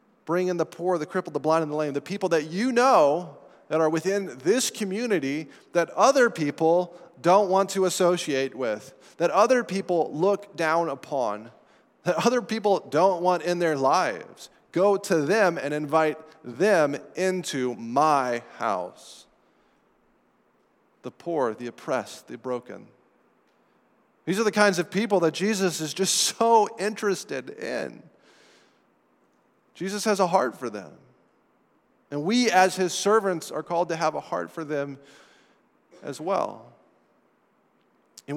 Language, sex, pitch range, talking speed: English, male, 155-200 Hz, 145 wpm